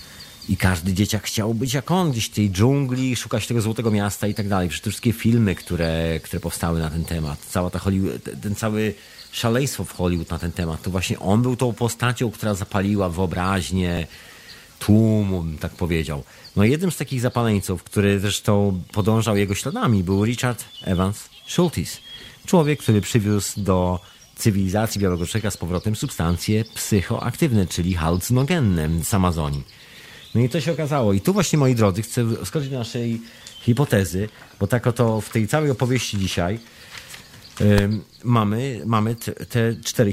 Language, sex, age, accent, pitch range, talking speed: Polish, male, 40-59, native, 95-120 Hz, 160 wpm